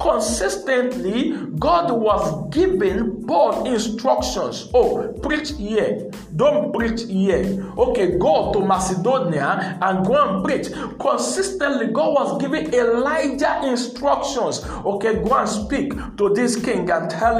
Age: 50-69